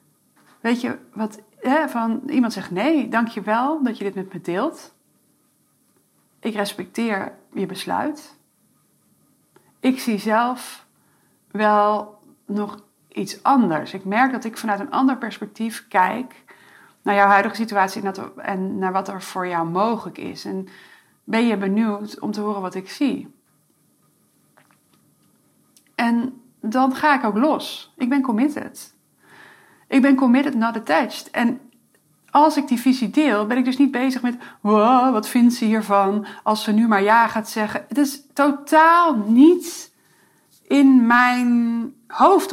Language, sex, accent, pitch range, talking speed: Dutch, female, Dutch, 205-280 Hz, 145 wpm